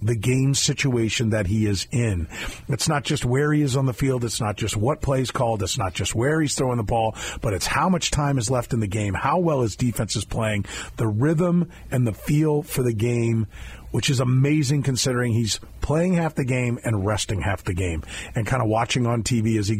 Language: English